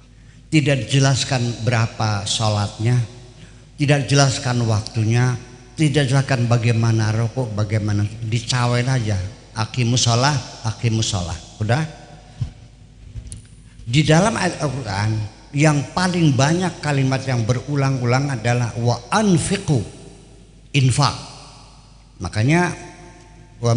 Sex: male